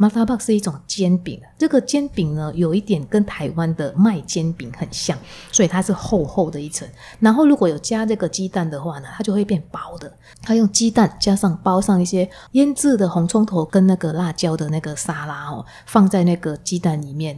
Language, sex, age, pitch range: Chinese, female, 30-49, 160-210 Hz